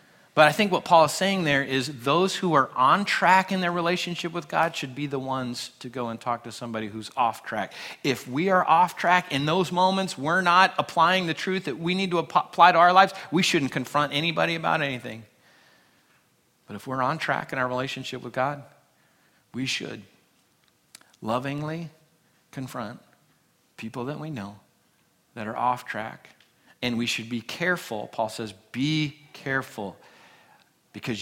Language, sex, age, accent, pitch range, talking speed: English, male, 40-59, American, 115-160 Hz, 175 wpm